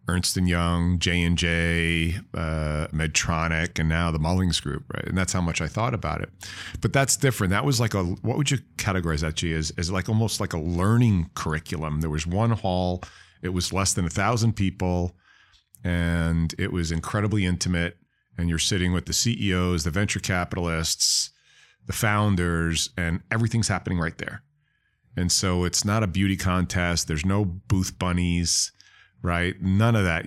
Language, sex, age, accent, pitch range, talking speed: English, male, 40-59, American, 85-105 Hz, 170 wpm